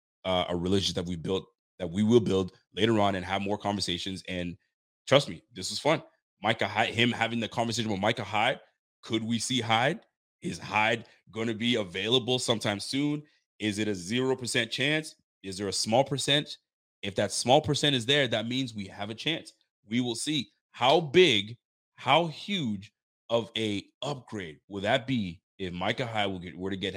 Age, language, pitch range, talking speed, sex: 30-49, English, 100-125 Hz, 185 wpm, male